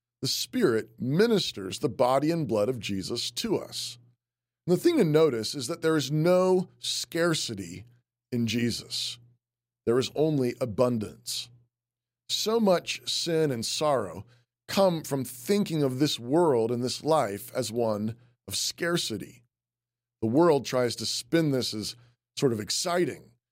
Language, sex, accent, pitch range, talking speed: English, male, American, 120-155 Hz, 140 wpm